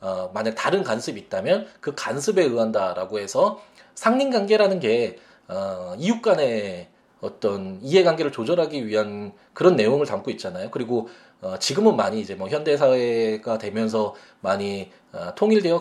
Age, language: 20-39, Korean